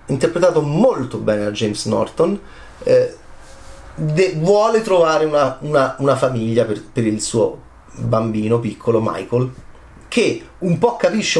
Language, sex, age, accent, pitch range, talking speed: Italian, male, 30-49, native, 120-160 Hz, 120 wpm